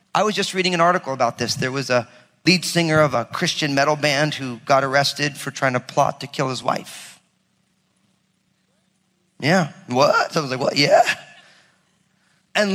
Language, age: English, 30-49